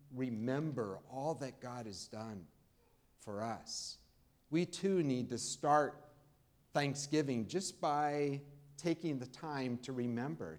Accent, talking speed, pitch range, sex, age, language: American, 120 wpm, 115-145 Hz, male, 50-69, English